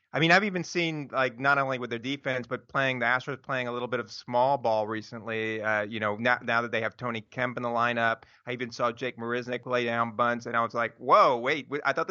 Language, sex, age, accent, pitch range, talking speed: English, male, 30-49, American, 120-140 Hz, 260 wpm